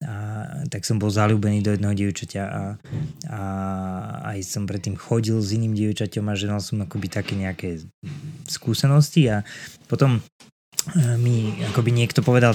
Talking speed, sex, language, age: 150 wpm, male, Slovak, 20-39